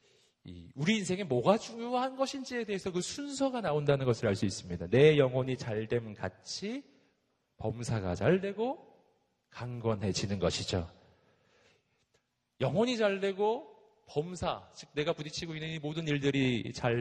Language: Korean